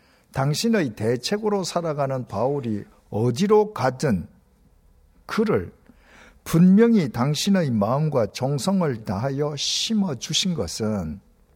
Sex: male